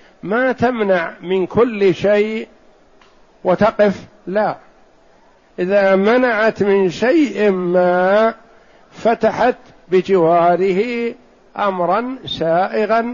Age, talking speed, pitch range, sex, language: 60-79, 75 wpm, 175-215 Hz, male, Arabic